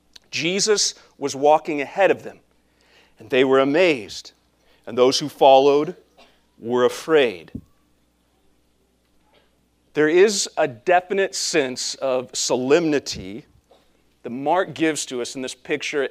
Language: English